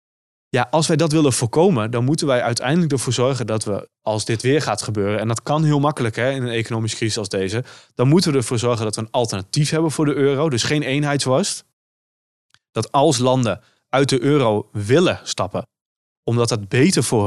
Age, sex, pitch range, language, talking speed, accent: 20-39, male, 110-130 Hz, Dutch, 200 wpm, Dutch